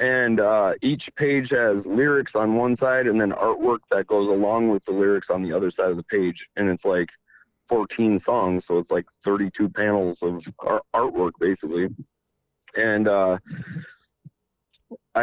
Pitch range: 90-110 Hz